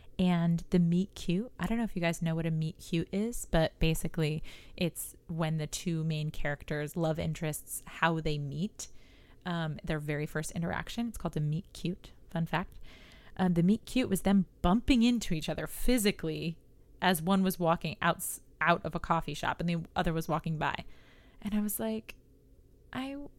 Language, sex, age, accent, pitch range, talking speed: English, female, 20-39, American, 165-245 Hz, 175 wpm